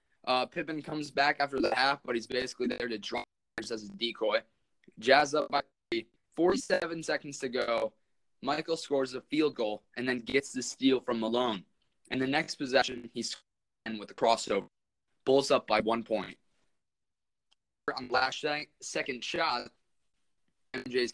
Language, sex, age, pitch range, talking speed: English, male, 20-39, 105-135 Hz, 160 wpm